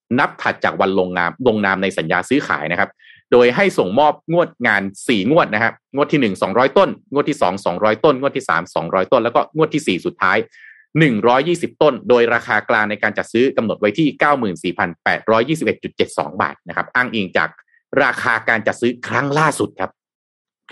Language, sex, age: Thai, male, 30-49